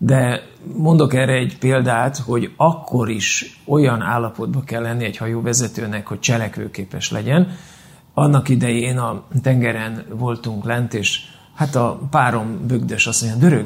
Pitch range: 120-170 Hz